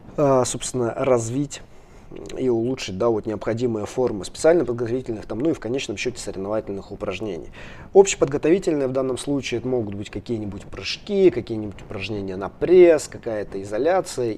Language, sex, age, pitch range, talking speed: Russian, male, 20-39, 115-150 Hz, 125 wpm